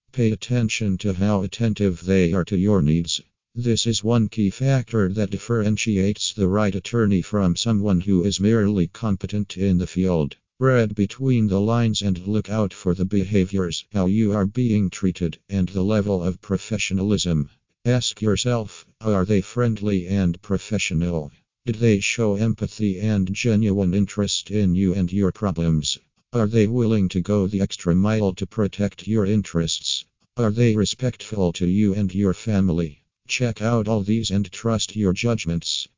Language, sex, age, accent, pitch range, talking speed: English, male, 50-69, American, 95-110 Hz, 160 wpm